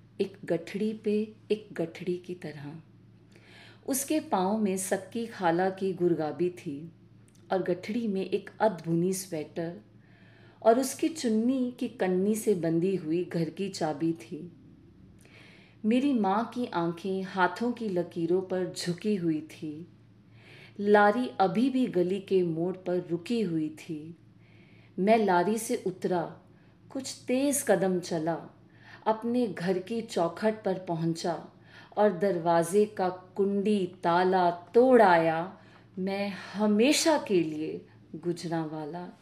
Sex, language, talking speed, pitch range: female, Punjabi, 125 wpm, 170-215 Hz